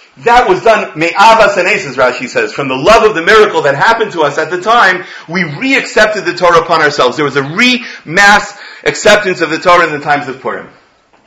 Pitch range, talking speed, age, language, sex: 140-190 Hz, 210 wpm, 40-59, English, male